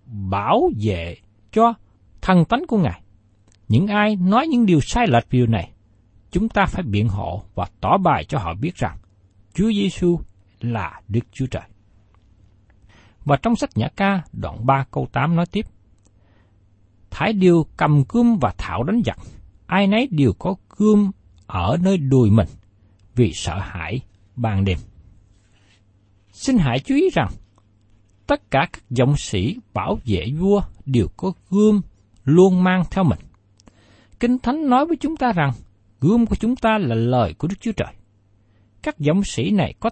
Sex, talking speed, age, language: male, 160 wpm, 60-79, Vietnamese